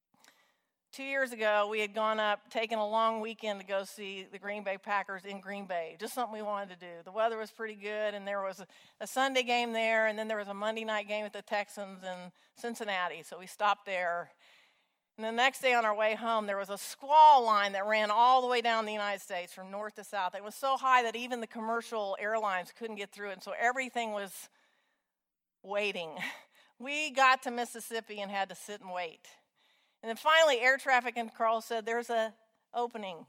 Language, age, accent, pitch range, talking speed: English, 50-69, American, 200-240 Hz, 220 wpm